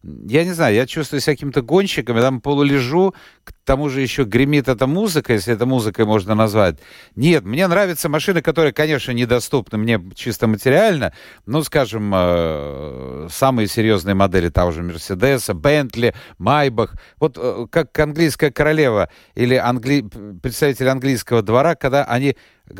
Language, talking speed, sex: Russian, 140 wpm, male